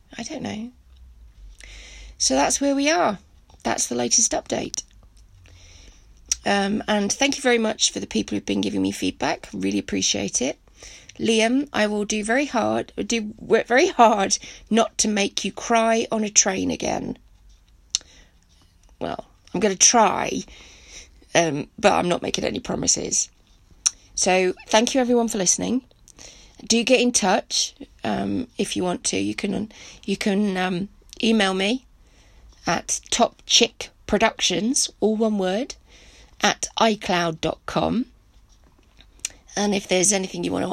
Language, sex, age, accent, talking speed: English, female, 30-49, British, 140 wpm